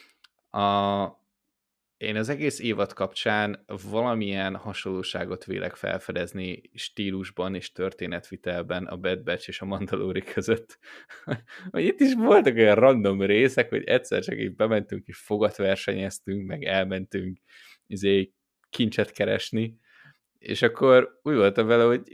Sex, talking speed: male, 115 wpm